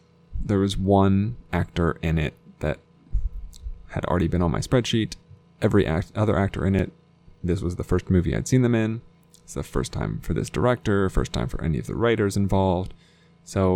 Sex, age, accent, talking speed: male, 20-39, American, 190 wpm